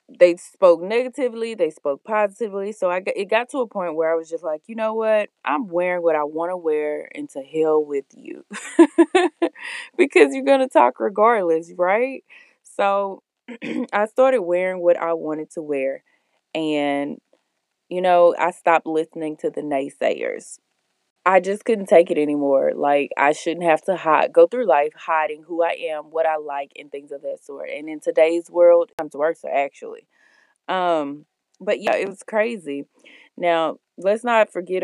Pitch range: 155-225 Hz